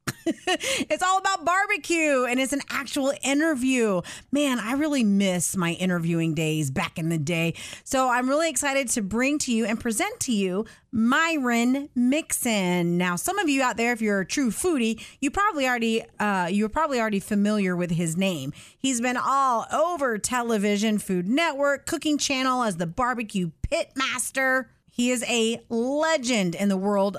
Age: 30-49